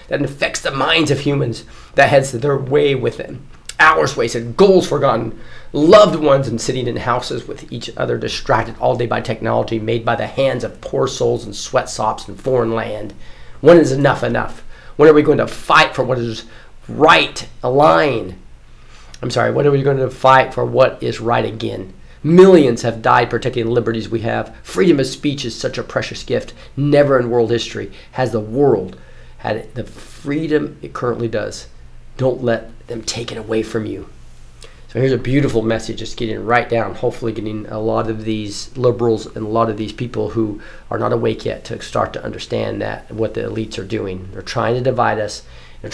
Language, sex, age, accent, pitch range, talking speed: English, male, 40-59, American, 110-130 Hz, 195 wpm